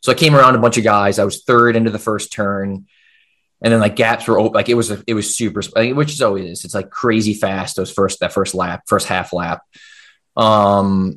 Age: 20-39